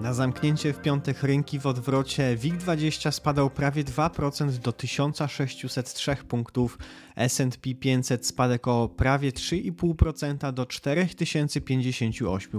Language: Polish